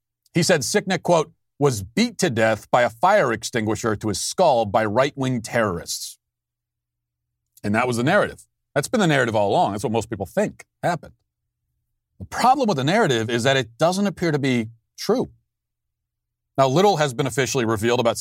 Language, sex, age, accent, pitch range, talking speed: English, male, 40-59, American, 110-145 Hz, 180 wpm